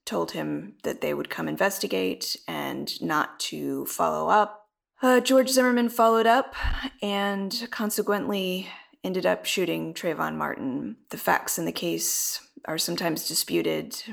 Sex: female